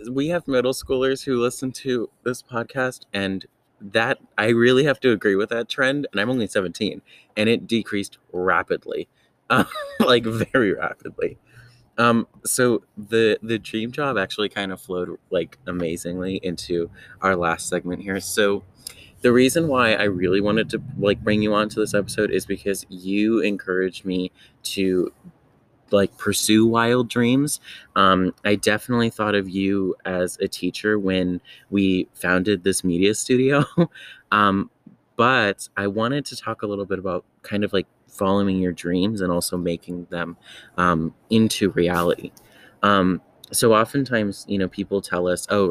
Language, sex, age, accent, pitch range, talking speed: English, male, 20-39, American, 95-115 Hz, 160 wpm